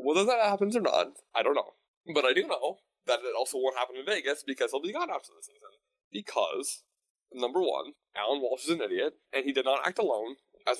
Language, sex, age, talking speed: English, male, 20-39, 230 wpm